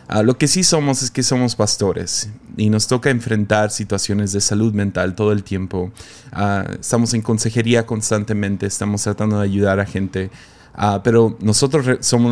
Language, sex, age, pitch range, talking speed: Spanish, male, 20-39, 100-115 Hz, 175 wpm